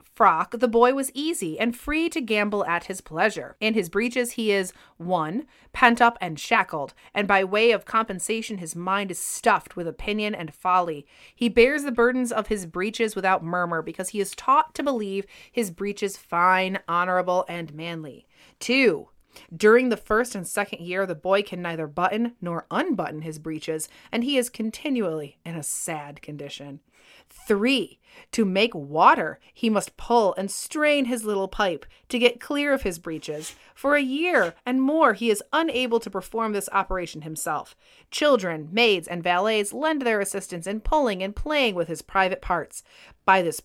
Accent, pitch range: American, 175-240 Hz